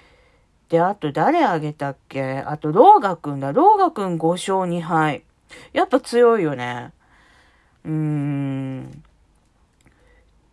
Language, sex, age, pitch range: Japanese, female, 40-59, 150-195 Hz